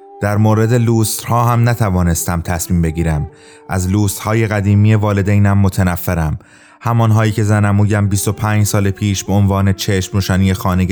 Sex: male